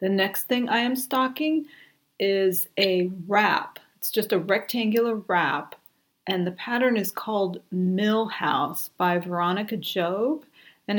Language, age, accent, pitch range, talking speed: English, 40-59, American, 175-215 Hz, 135 wpm